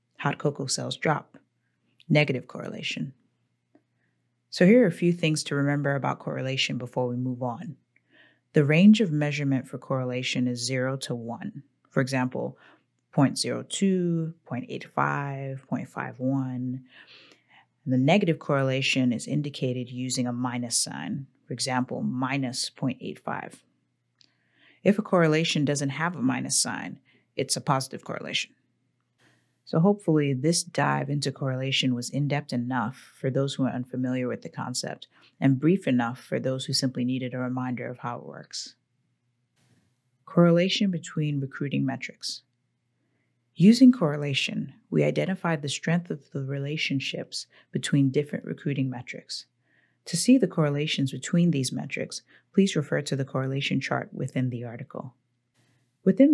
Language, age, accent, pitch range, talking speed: English, 30-49, American, 125-155 Hz, 135 wpm